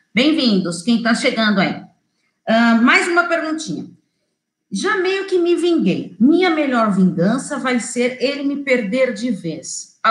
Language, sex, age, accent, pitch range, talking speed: Portuguese, female, 40-59, Brazilian, 220-300 Hz, 150 wpm